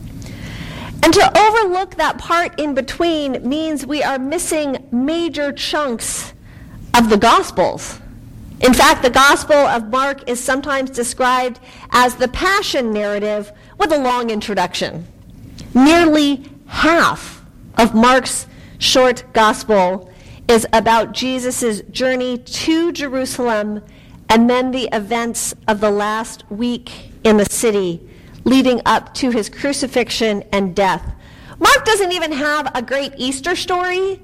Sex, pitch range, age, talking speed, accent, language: female, 225-285 Hz, 40-59, 125 wpm, American, English